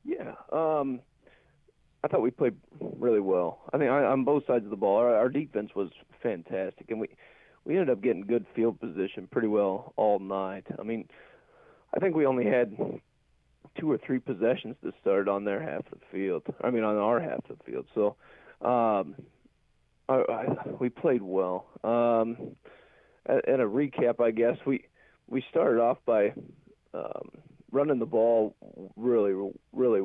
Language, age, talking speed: English, 40-59, 165 wpm